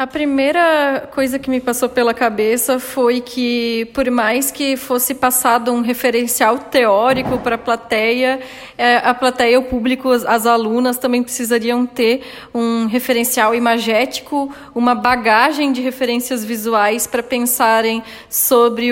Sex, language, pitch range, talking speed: female, Portuguese, 230-265 Hz, 130 wpm